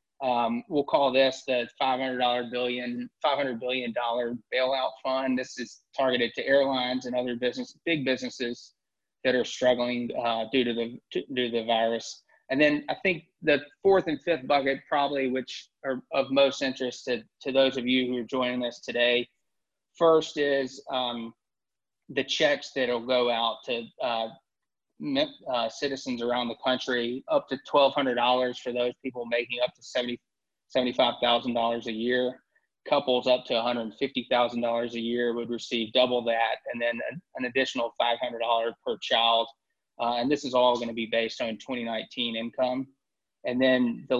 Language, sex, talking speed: English, male, 160 wpm